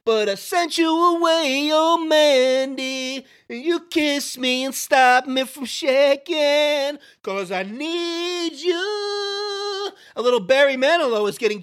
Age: 30-49